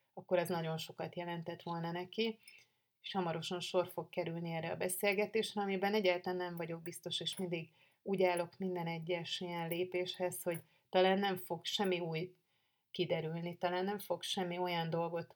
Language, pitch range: Hungarian, 170-190 Hz